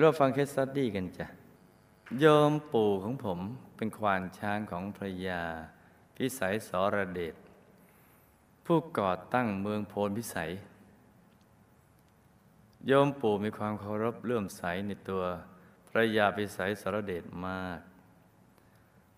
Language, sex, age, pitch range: Thai, male, 20-39, 95-115 Hz